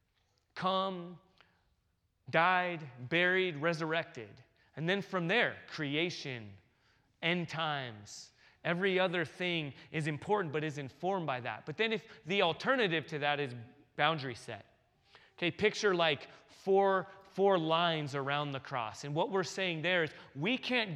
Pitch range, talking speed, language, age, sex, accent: 130-185 Hz, 135 wpm, English, 30-49, male, American